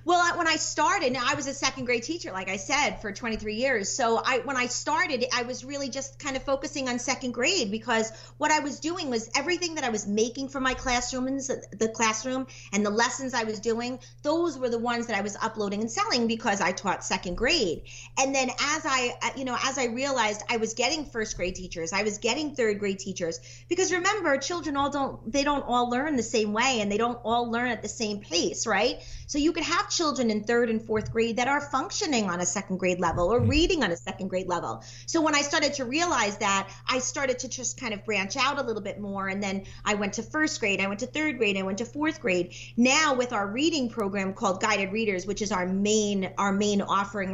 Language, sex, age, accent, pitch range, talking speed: English, female, 30-49, American, 200-265 Hz, 240 wpm